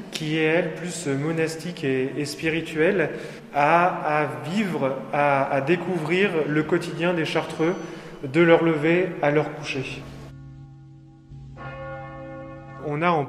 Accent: French